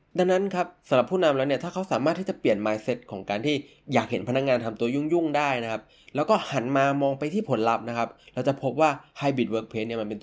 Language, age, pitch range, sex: Thai, 20-39, 110-140 Hz, male